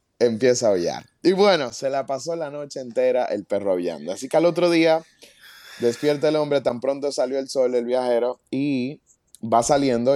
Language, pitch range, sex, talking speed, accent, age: Spanish, 110-140 Hz, male, 190 wpm, Venezuelan, 20-39